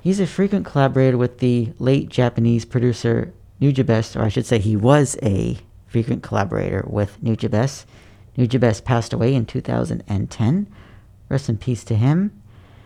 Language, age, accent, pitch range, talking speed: English, 40-59, American, 110-135 Hz, 145 wpm